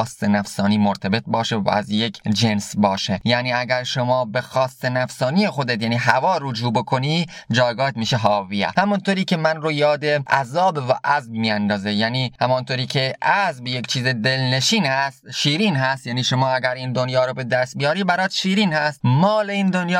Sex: male